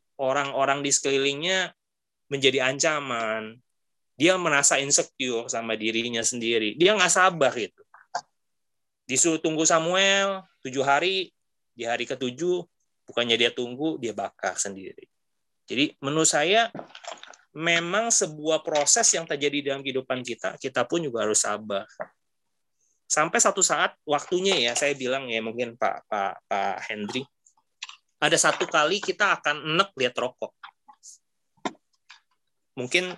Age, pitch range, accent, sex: 30-49, 115-165 Hz, native, male